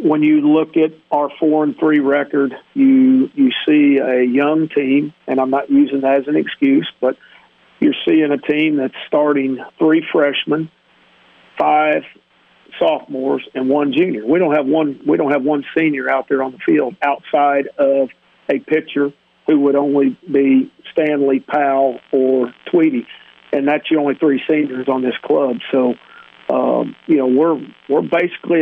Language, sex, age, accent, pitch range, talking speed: English, male, 50-69, American, 140-160 Hz, 170 wpm